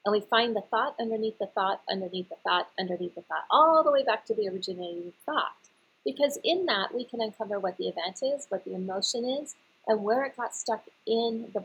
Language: English